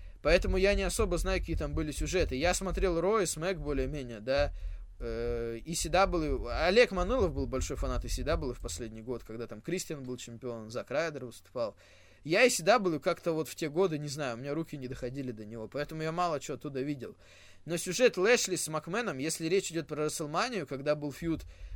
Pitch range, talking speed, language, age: 120-180 Hz, 195 wpm, Russian, 20-39